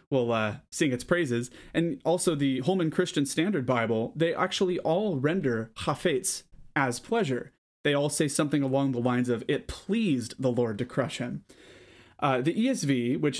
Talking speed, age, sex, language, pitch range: 170 wpm, 30-49, male, English, 125-160 Hz